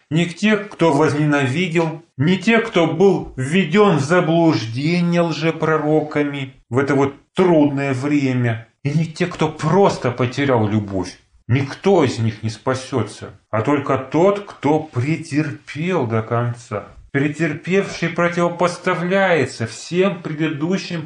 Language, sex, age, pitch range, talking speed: Russian, male, 30-49, 115-160 Hz, 115 wpm